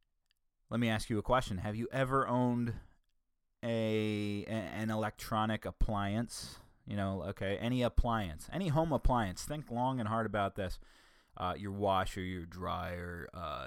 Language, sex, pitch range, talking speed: English, male, 95-120 Hz, 155 wpm